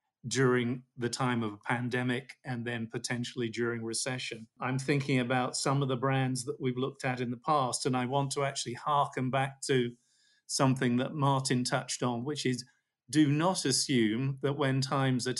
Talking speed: 185 wpm